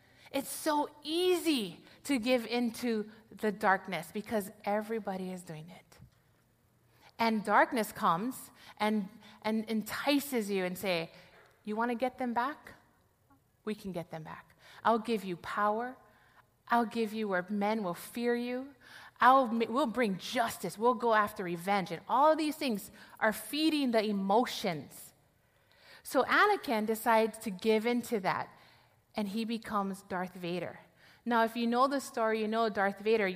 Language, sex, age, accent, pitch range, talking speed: English, female, 30-49, American, 195-250 Hz, 150 wpm